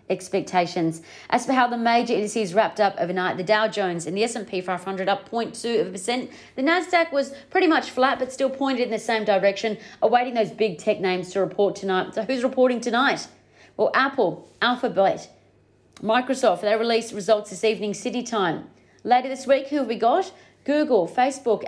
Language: English